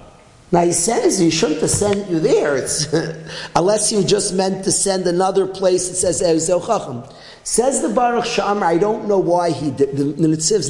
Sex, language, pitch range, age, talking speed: male, English, 165-230 Hz, 40-59, 180 wpm